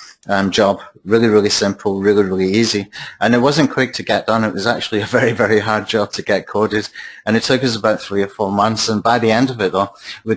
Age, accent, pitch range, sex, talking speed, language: 30-49, British, 100-115 Hz, male, 250 wpm, English